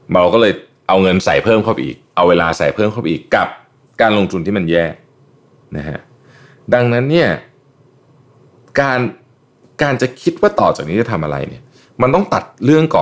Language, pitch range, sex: Thai, 95-135 Hz, male